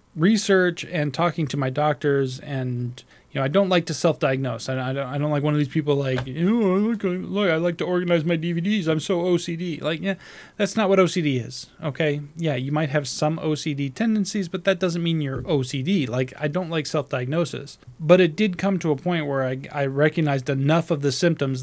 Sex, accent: male, American